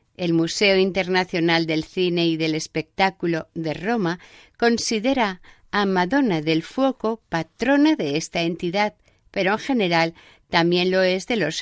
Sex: female